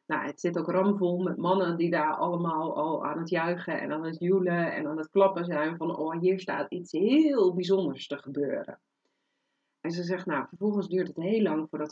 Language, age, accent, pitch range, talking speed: Dutch, 40-59, Dutch, 170-195 Hz, 210 wpm